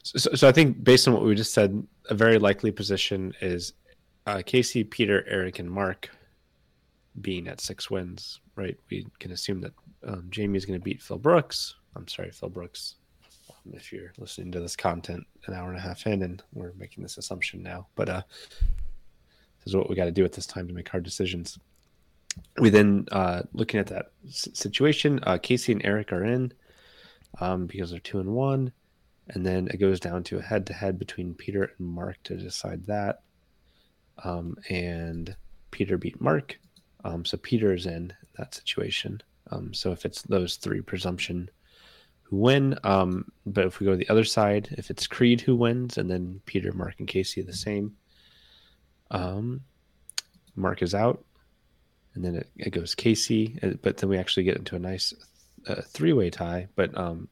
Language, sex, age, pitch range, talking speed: English, male, 20-39, 90-105 Hz, 185 wpm